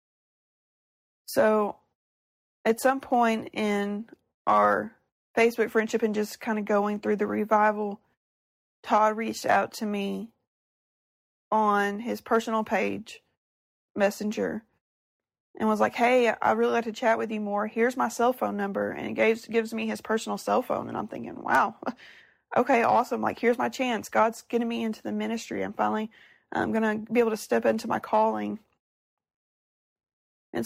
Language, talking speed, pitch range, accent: English, 155 wpm, 195-230 Hz, American